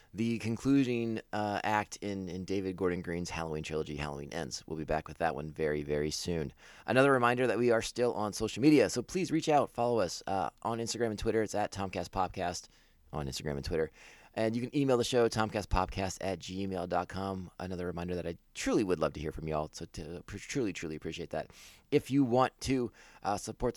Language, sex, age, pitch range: English, male, 30-49, 90-120 Hz